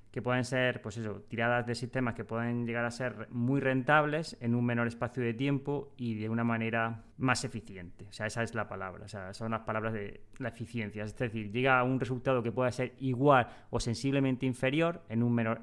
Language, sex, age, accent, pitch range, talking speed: Spanish, male, 20-39, Spanish, 110-125 Hz, 220 wpm